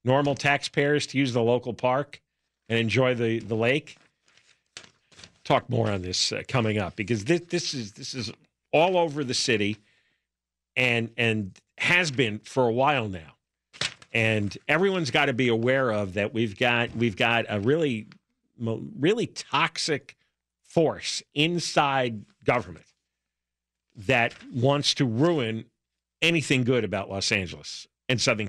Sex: male